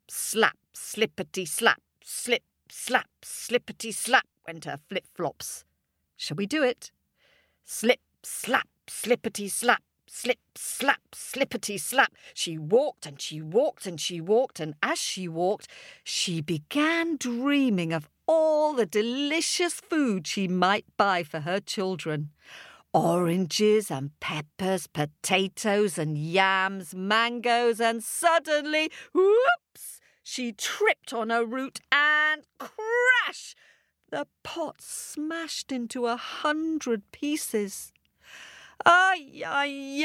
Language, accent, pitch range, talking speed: English, British, 200-300 Hz, 110 wpm